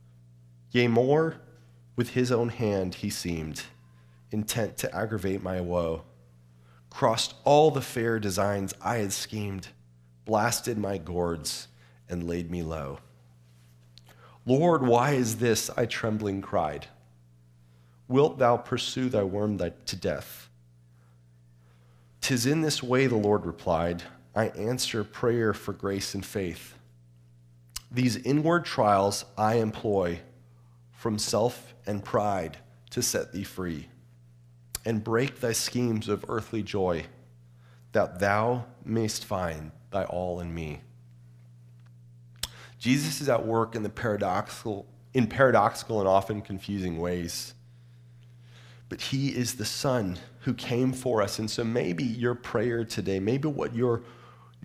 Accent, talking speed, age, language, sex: American, 125 wpm, 30-49, English, male